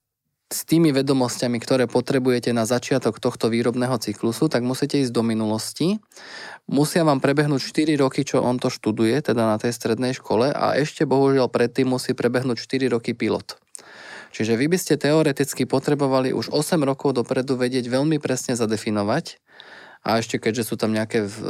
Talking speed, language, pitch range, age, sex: 160 wpm, Slovak, 110-130 Hz, 20-39, male